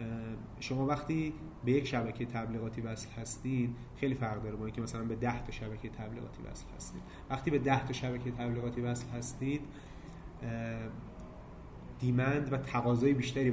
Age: 30-49